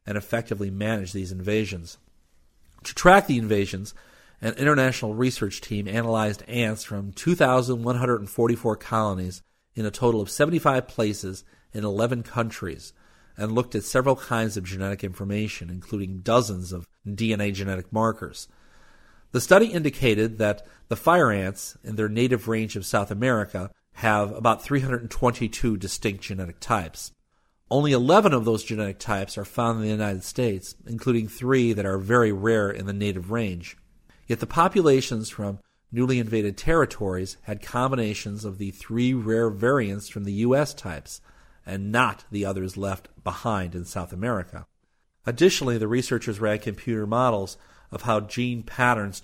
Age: 40-59